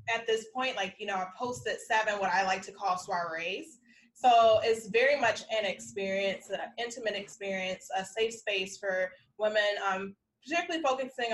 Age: 20-39